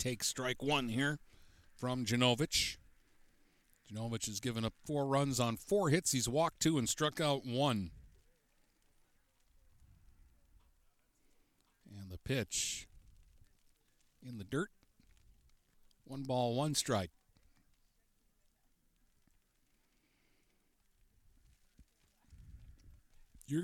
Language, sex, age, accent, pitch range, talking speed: English, male, 60-79, American, 100-135 Hz, 85 wpm